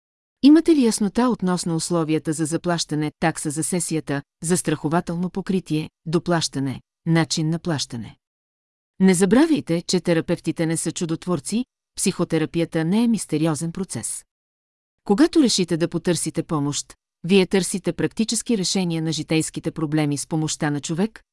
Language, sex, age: Bulgarian, female, 40-59